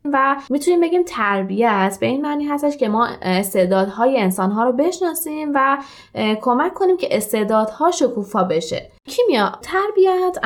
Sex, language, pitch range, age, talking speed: female, Persian, 200-290 Hz, 20-39, 140 wpm